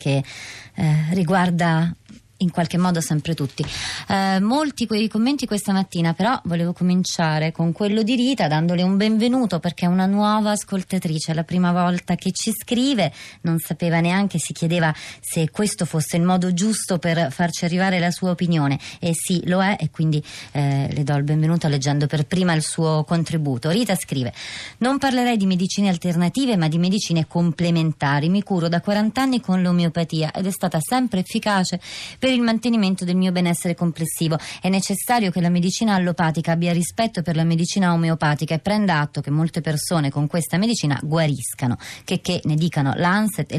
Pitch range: 155-195 Hz